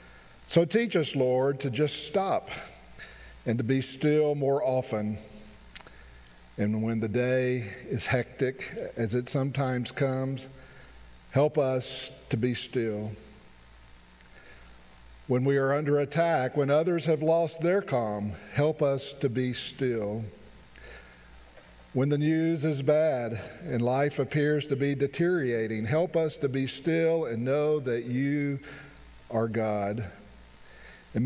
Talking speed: 130 wpm